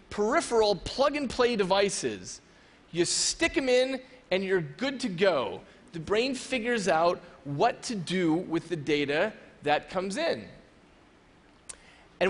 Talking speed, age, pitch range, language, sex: 125 wpm, 30-49, 175-230 Hz, English, male